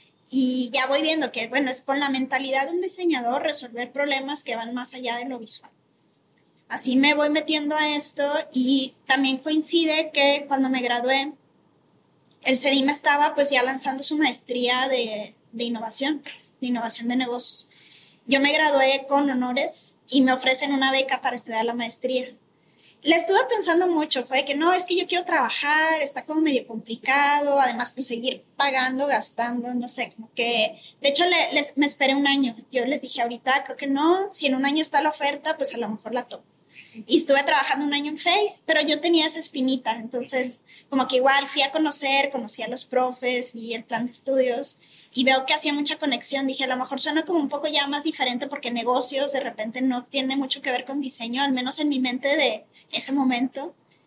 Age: 20-39